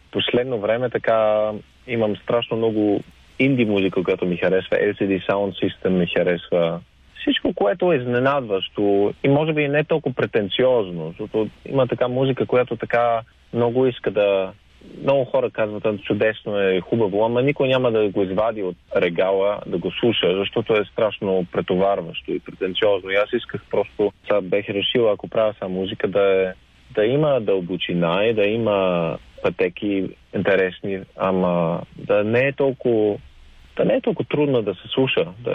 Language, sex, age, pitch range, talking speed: Bulgarian, male, 40-59, 95-120 Hz, 155 wpm